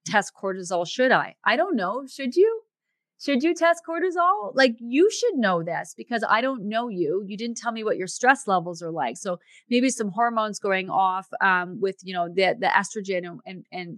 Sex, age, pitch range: female, 30-49, 180-235 Hz